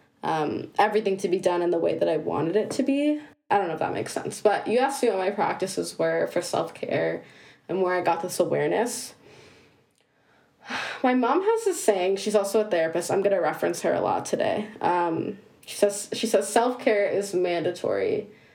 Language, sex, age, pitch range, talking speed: English, female, 20-39, 170-215 Hz, 200 wpm